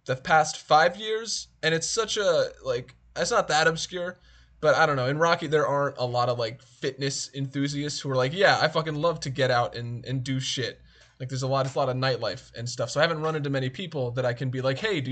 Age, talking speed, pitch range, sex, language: 20-39, 255 wpm, 130-180 Hz, male, English